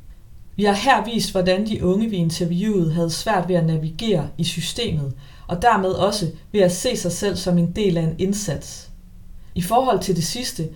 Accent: native